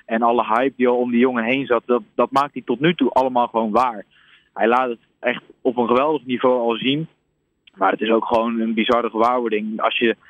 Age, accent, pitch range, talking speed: 20-39, Dutch, 115-135 Hz, 235 wpm